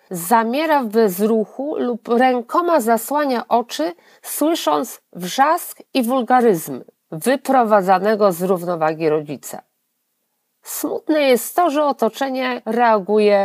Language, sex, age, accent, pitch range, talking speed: Polish, female, 50-69, native, 205-290 Hz, 95 wpm